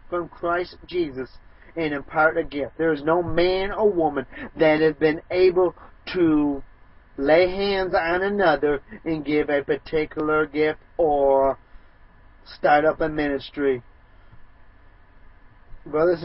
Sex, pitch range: male, 135-175 Hz